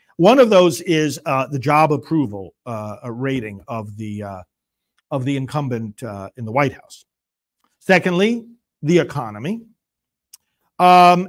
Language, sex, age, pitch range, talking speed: English, male, 50-69, 130-215 Hz, 135 wpm